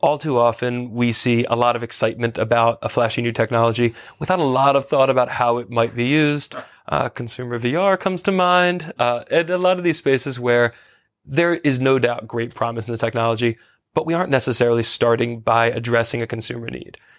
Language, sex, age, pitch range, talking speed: English, male, 20-39, 115-130 Hz, 200 wpm